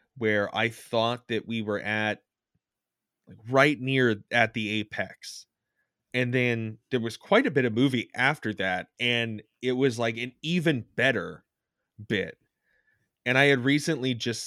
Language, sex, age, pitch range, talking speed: English, male, 20-39, 110-135 Hz, 155 wpm